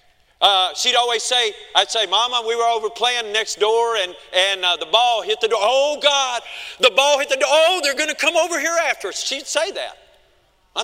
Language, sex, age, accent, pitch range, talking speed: English, male, 40-59, American, 205-295 Hz, 225 wpm